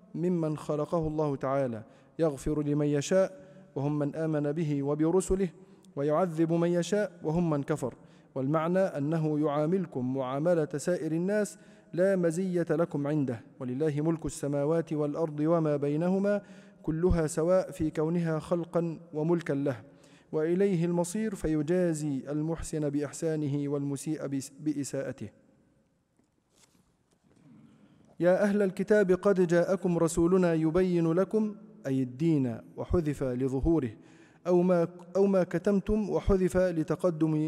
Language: Arabic